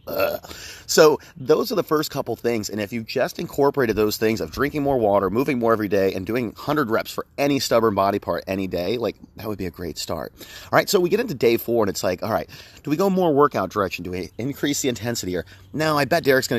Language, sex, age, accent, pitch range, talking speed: English, male, 30-49, American, 95-135 Hz, 250 wpm